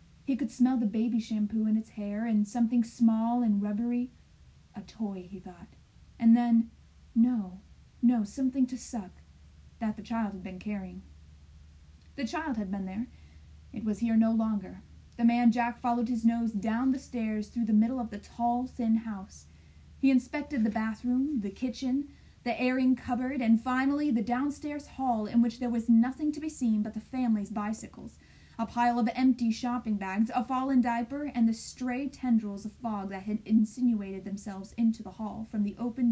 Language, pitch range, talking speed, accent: English, 215-250 Hz, 180 wpm, American